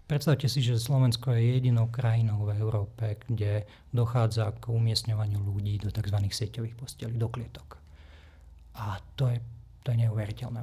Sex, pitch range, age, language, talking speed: male, 115-130 Hz, 40-59, Slovak, 145 wpm